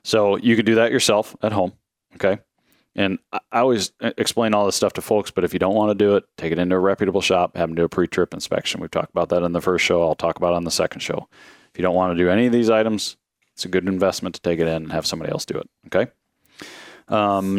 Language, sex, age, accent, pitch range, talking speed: English, male, 30-49, American, 90-110 Hz, 270 wpm